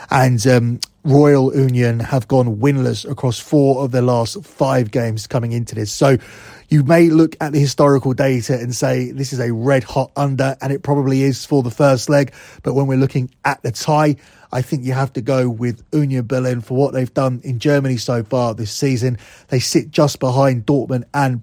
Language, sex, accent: English, male, British